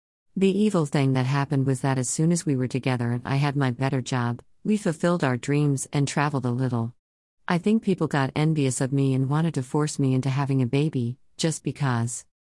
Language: English